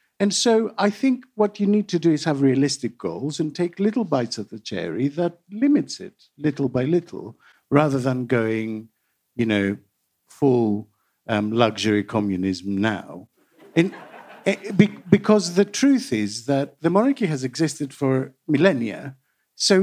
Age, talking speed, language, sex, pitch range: 50-69, 145 wpm, English, male, 140-215 Hz